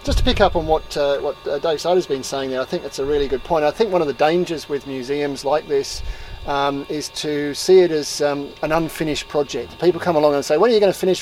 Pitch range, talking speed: 140-170 Hz, 280 wpm